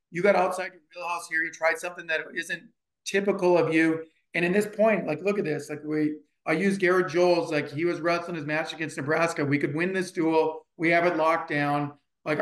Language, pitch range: English, 155-185 Hz